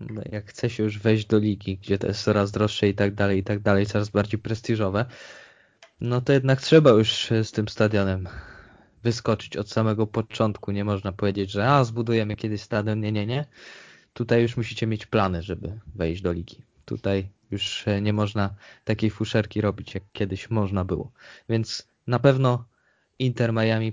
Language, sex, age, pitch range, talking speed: Polish, male, 20-39, 100-120 Hz, 175 wpm